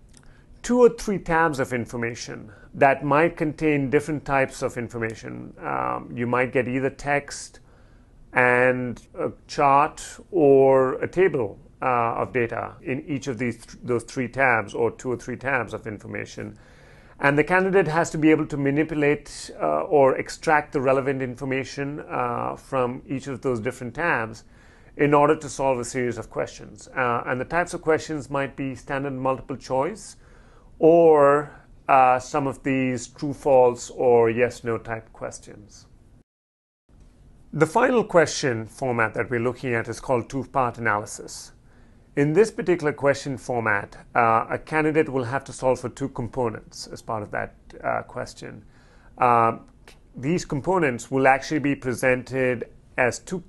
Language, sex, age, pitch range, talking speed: English, male, 40-59, 120-145 Hz, 155 wpm